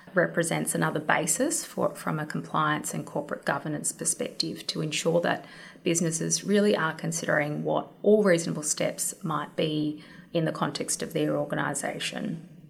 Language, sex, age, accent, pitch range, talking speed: English, female, 20-39, Australian, 155-180 Hz, 140 wpm